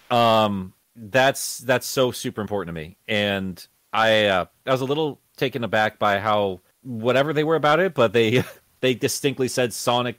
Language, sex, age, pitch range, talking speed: English, male, 30-49, 100-120 Hz, 175 wpm